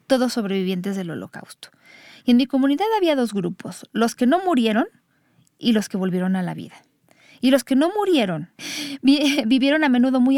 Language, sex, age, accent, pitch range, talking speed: Spanish, female, 40-59, Mexican, 210-255 Hz, 180 wpm